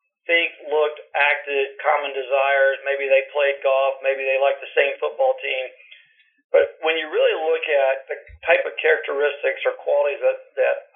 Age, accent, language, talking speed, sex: 50-69, American, English, 165 wpm, male